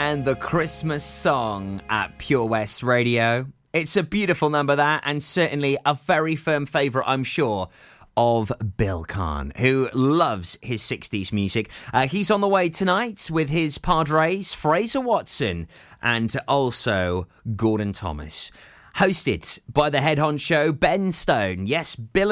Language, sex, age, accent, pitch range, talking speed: English, male, 30-49, British, 110-160 Hz, 145 wpm